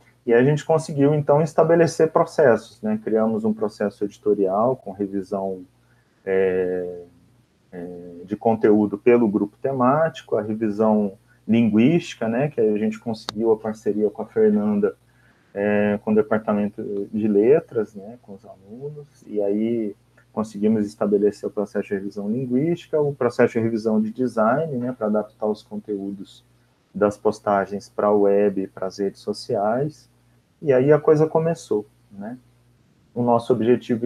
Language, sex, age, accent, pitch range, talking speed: Portuguese, male, 30-49, Brazilian, 105-135 Hz, 140 wpm